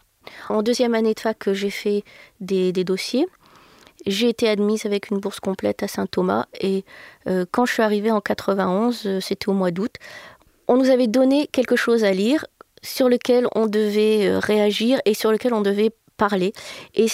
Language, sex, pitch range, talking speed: French, female, 205-250 Hz, 180 wpm